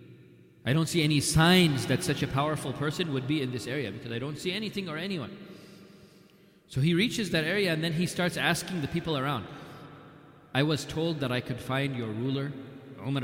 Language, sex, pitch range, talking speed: English, male, 120-150 Hz, 205 wpm